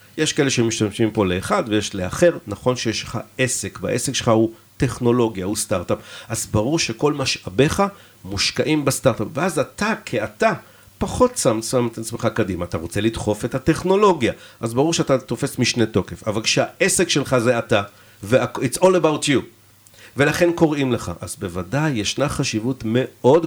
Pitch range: 110-140 Hz